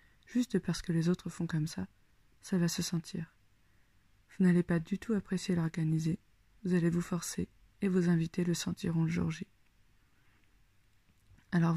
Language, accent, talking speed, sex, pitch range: French, French, 165 wpm, female, 115-180 Hz